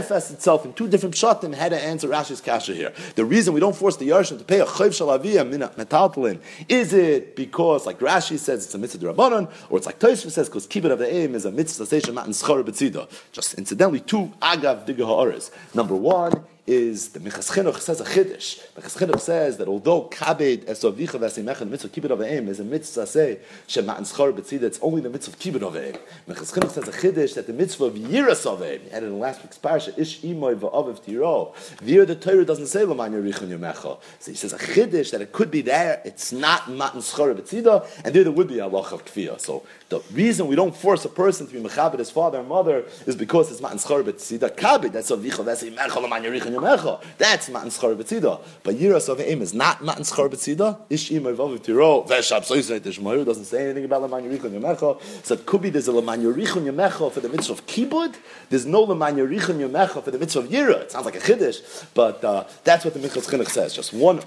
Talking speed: 210 wpm